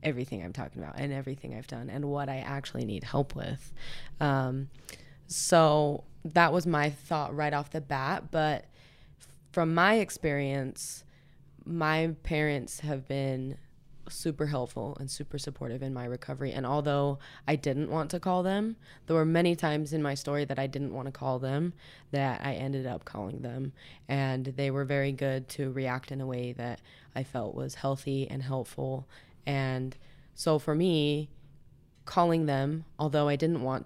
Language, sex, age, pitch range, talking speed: English, female, 20-39, 135-150 Hz, 170 wpm